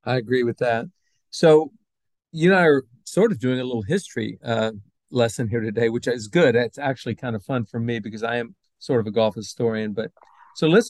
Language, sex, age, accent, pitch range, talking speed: English, male, 50-69, American, 115-145 Hz, 220 wpm